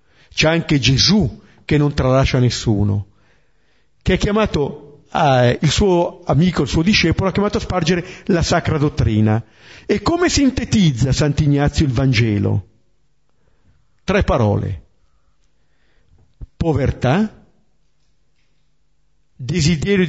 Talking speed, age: 100 wpm, 50-69